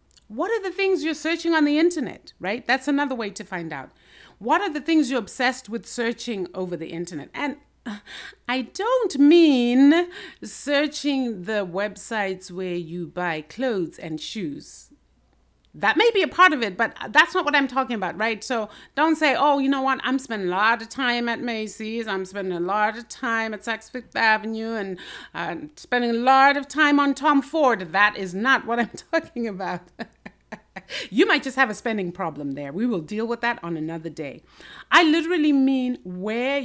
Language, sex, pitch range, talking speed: English, female, 195-290 Hz, 190 wpm